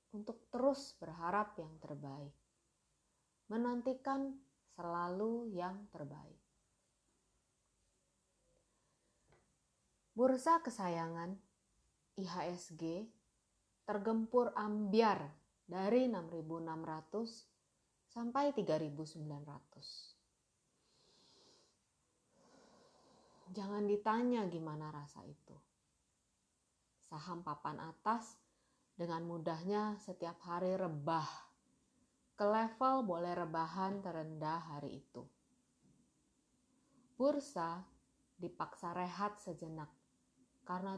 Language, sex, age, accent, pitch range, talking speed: Indonesian, female, 30-49, native, 165-230 Hz, 65 wpm